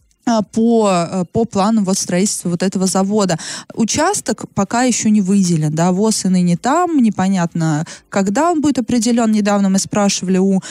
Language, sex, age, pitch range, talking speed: Russian, female, 20-39, 185-225 Hz, 145 wpm